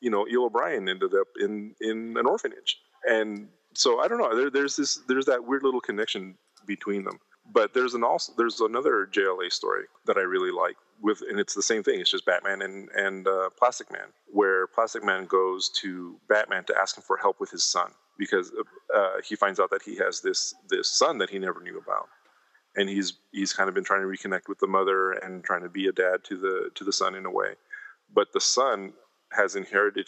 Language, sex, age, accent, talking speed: English, male, 30-49, American, 225 wpm